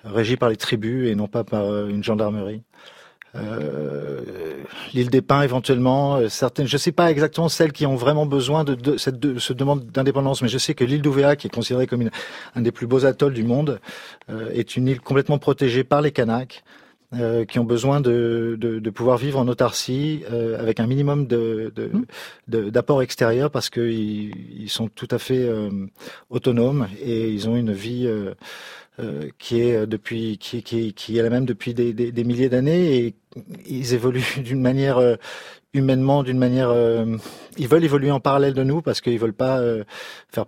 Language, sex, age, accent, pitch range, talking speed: French, male, 40-59, French, 115-135 Hz, 195 wpm